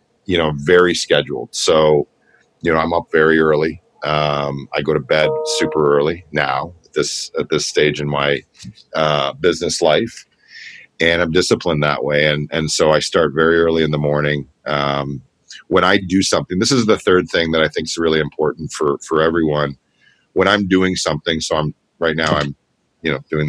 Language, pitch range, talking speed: English, 75-85 Hz, 190 wpm